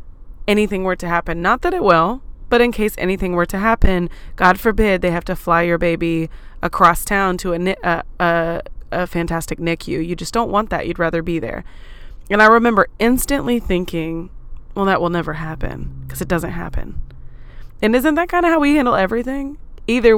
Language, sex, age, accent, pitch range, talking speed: English, female, 20-39, American, 165-200 Hz, 195 wpm